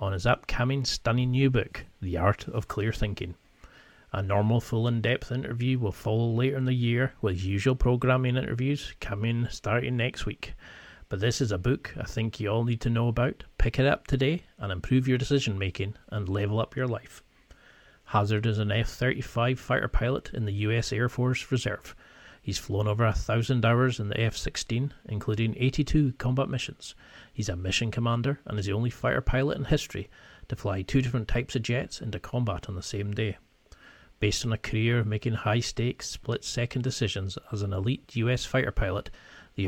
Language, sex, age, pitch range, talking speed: English, male, 40-59, 105-125 Hz, 185 wpm